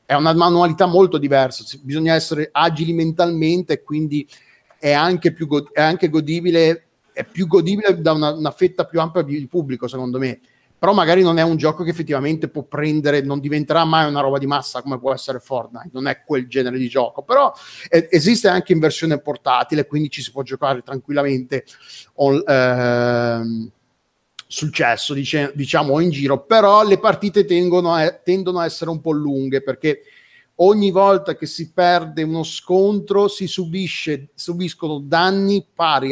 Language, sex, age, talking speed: Italian, male, 30-49, 160 wpm